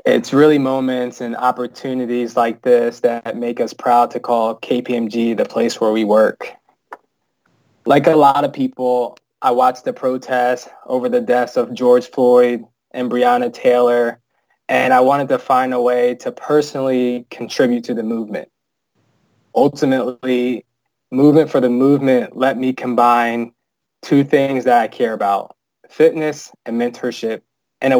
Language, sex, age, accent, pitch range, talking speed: English, male, 20-39, American, 120-140 Hz, 150 wpm